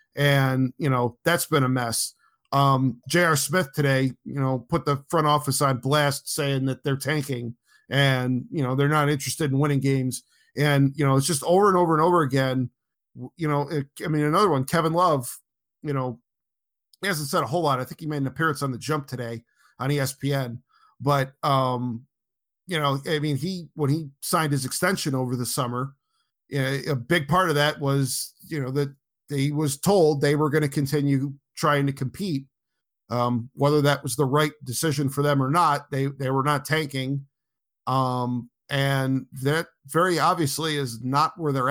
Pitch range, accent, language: 135-155 Hz, American, English